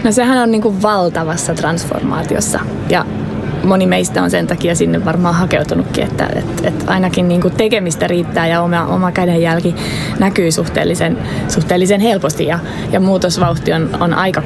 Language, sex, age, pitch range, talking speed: Finnish, female, 20-39, 160-185 Hz, 150 wpm